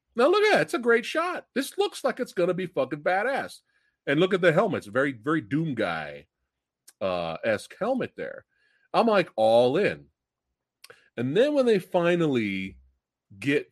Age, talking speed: 40-59, 185 wpm